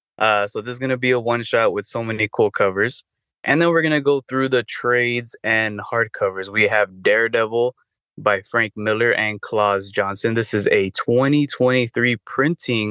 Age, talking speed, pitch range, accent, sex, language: 20-39, 180 wpm, 105-125 Hz, American, male, English